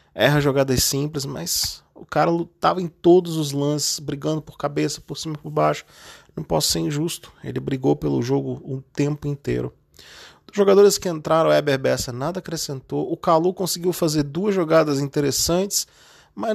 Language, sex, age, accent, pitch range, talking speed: Portuguese, male, 20-39, Brazilian, 120-160 Hz, 170 wpm